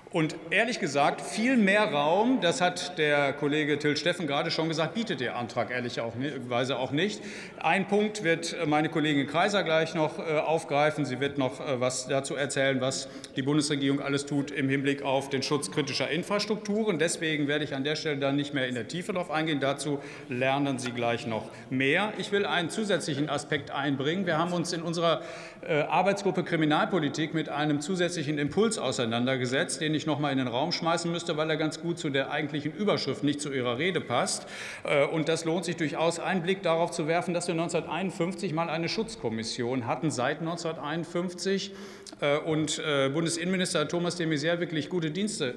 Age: 50-69